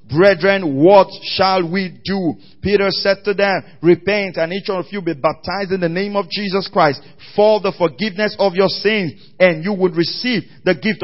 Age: 40-59